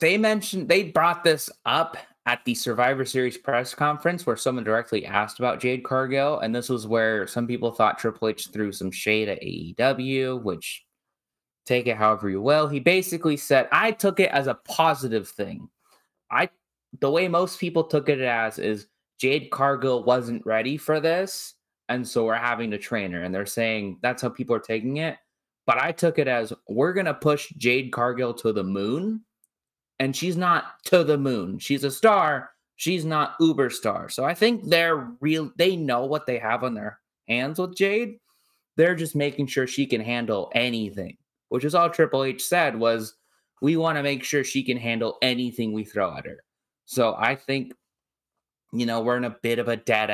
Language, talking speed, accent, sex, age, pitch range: English, 195 wpm, American, male, 20-39, 115-150 Hz